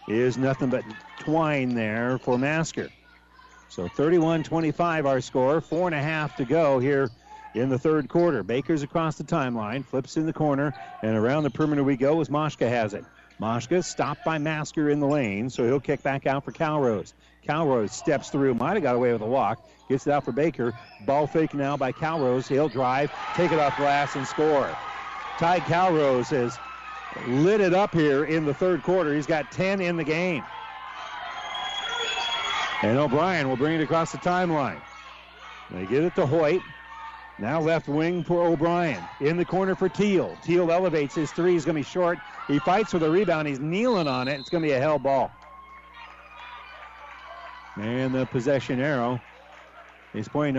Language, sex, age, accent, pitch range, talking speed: English, male, 50-69, American, 135-165 Hz, 180 wpm